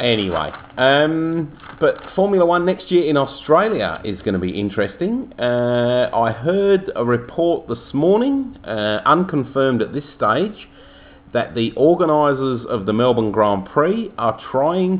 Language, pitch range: English, 100-145 Hz